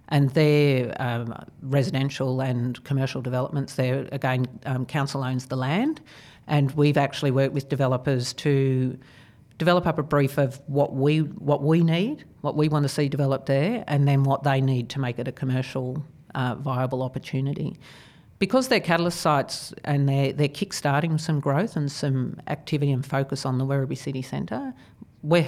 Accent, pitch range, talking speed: Australian, 130-150 Hz, 170 wpm